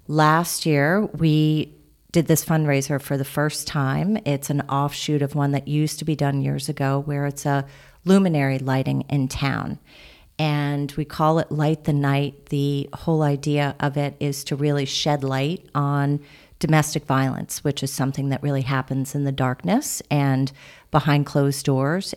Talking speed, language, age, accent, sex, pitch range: 170 wpm, English, 40-59, American, female, 140-150 Hz